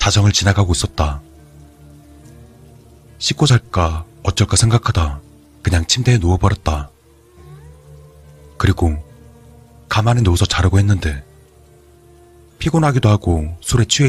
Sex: male